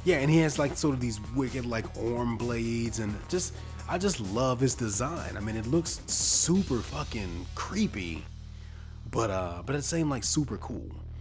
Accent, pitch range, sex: American, 90-125 Hz, male